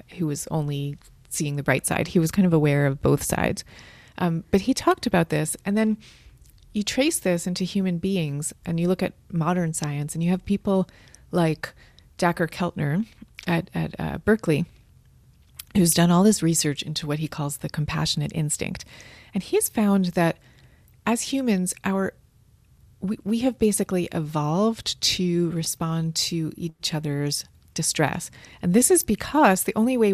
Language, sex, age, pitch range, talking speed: English, female, 30-49, 155-190 Hz, 165 wpm